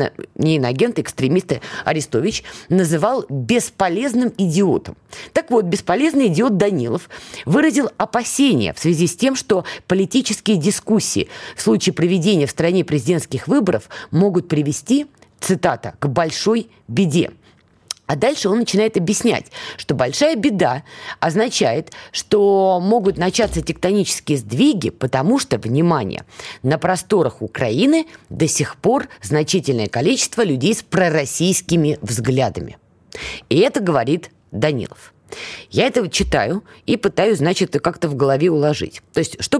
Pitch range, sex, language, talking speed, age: 150-215 Hz, female, Russian, 125 wpm, 20-39